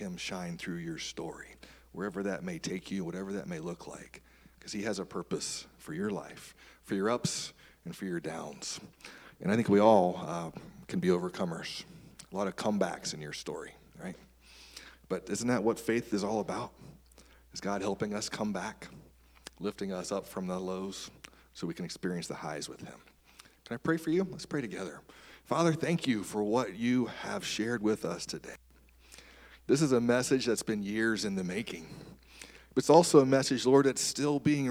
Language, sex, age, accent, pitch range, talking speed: English, male, 40-59, American, 95-125 Hz, 195 wpm